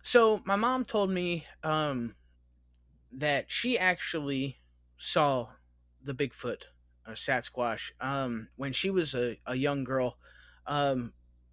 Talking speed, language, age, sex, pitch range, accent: 115 wpm, English, 20-39, male, 110-165 Hz, American